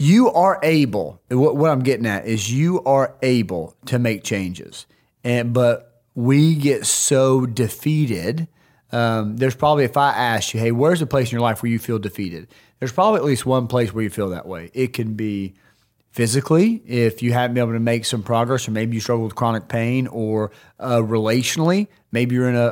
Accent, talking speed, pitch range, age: American, 205 wpm, 110-130 Hz, 30-49